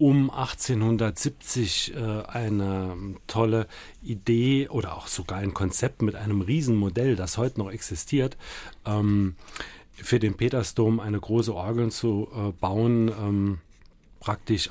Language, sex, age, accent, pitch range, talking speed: German, male, 40-59, German, 100-120 Hz, 120 wpm